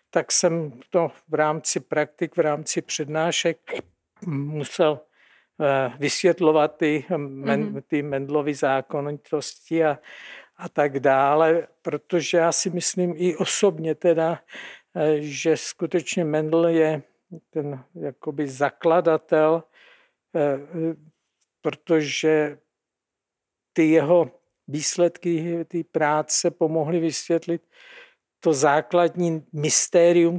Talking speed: 85 wpm